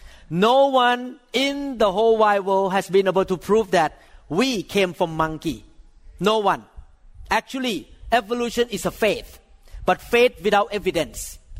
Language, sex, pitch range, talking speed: English, male, 190-240 Hz, 145 wpm